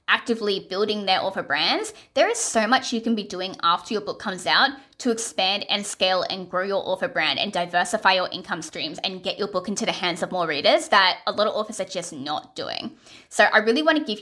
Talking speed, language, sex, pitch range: 240 wpm, English, female, 185-240 Hz